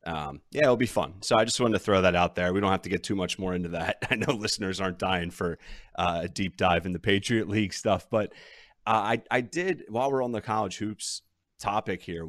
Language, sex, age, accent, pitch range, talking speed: English, male, 30-49, American, 90-110 Hz, 255 wpm